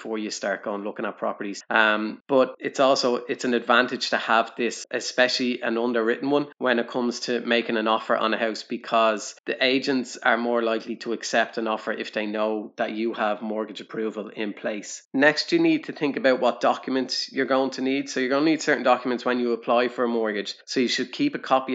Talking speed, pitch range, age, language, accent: 225 wpm, 110-125 Hz, 20-39, English, Irish